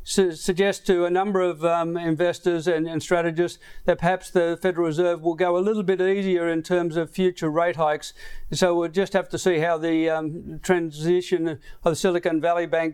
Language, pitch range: English, 165-185 Hz